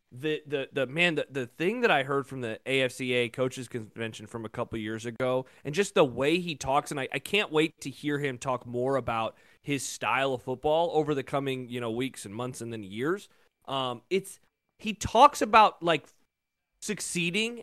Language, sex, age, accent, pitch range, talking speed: English, male, 30-49, American, 135-200 Hz, 205 wpm